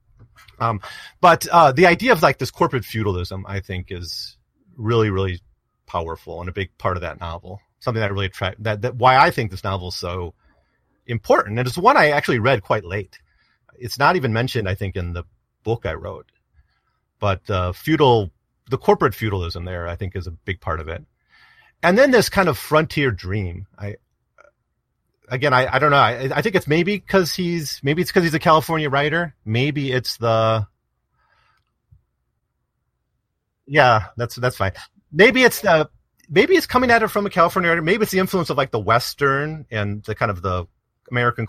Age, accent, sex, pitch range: 30-49, American, male, 95-145 Hz